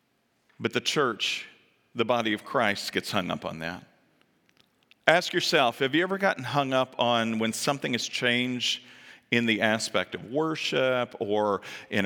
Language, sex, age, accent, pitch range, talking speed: English, male, 40-59, American, 125-195 Hz, 160 wpm